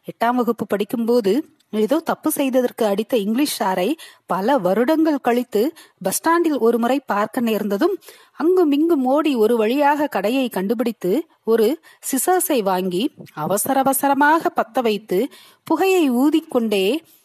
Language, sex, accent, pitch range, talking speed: Tamil, female, native, 220-315 Hz, 105 wpm